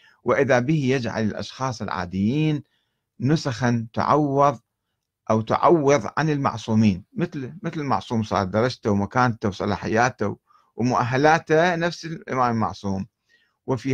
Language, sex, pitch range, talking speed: Arabic, male, 105-130 Hz, 100 wpm